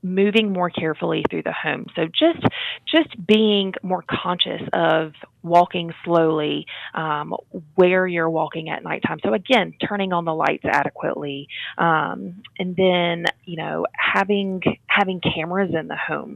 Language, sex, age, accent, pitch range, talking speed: English, female, 30-49, American, 160-195 Hz, 145 wpm